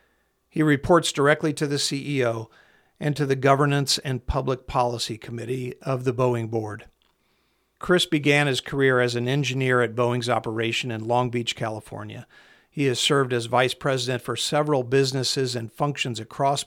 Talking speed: 160 wpm